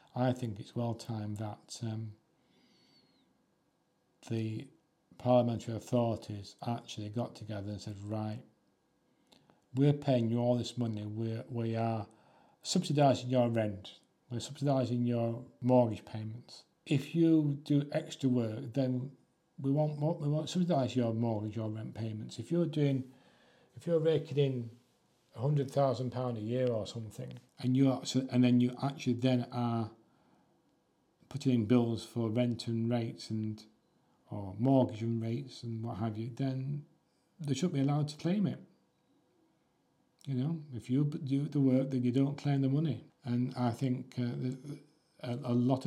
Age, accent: 40-59, British